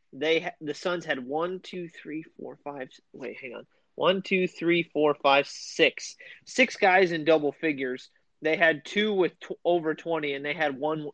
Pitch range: 140-165 Hz